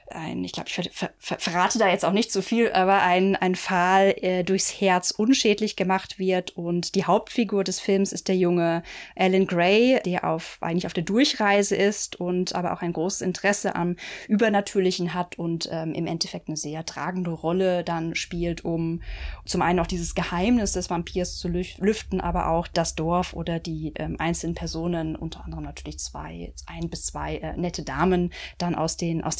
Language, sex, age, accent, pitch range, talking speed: German, female, 20-39, German, 170-210 Hz, 190 wpm